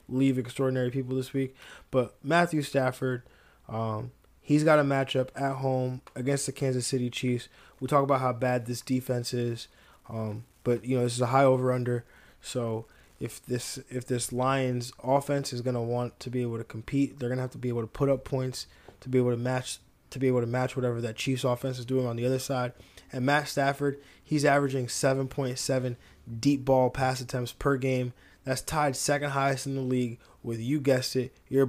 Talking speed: 205 wpm